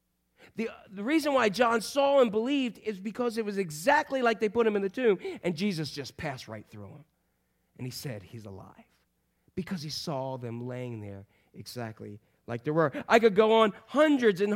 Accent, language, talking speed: American, English, 200 wpm